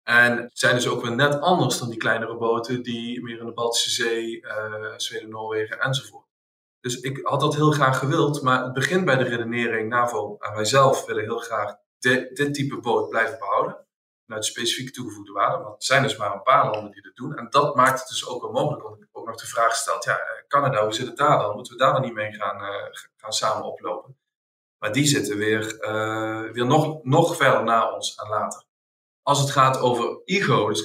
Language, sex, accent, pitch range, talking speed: Dutch, male, Dutch, 110-140 Hz, 220 wpm